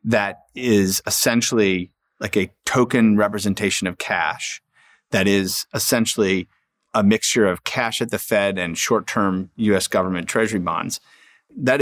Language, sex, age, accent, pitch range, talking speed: English, male, 30-49, American, 95-115 Hz, 130 wpm